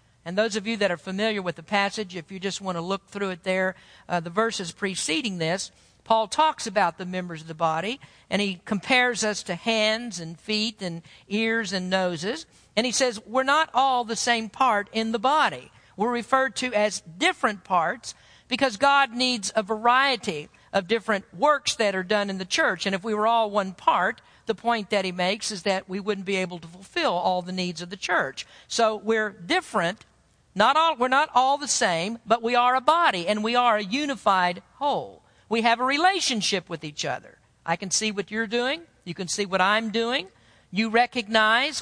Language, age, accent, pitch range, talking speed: English, 50-69, American, 195-245 Hz, 205 wpm